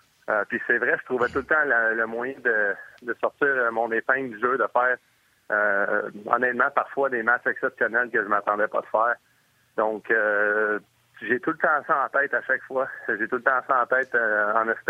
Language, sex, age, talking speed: French, male, 30-49, 220 wpm